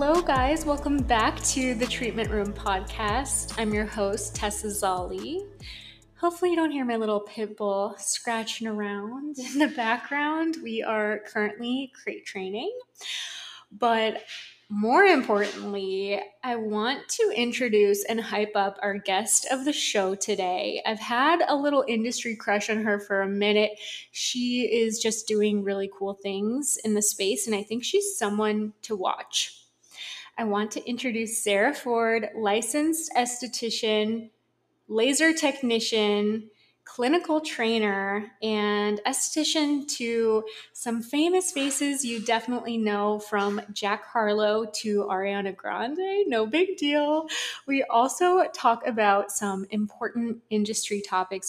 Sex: female